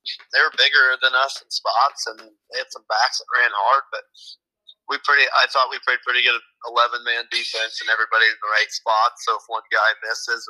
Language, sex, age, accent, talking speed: English, male, 30-49, American, 205 wpm